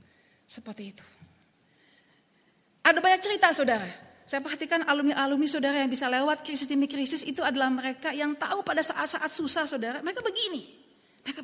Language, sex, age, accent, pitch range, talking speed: Indonesian, female, 40-59, native, 255-340 Hz, 140 wpm